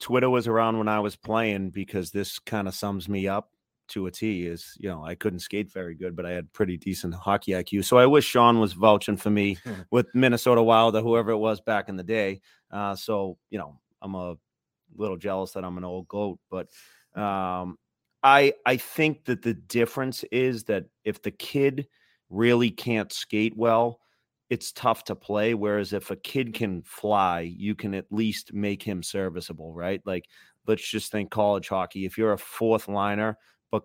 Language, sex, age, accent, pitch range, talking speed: English, male, 30-49, American, 95-115 Hz, 195 wpm